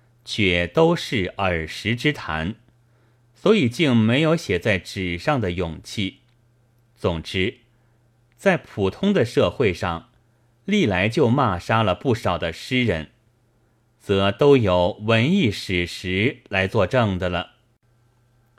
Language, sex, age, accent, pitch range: Chinese, male, 30-49, native, 95-120 Hz